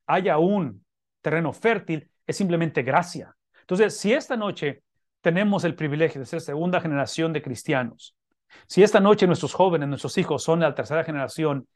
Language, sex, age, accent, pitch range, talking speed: English, male, 40-59, Mexican, 155-200 Hz, 160 wpm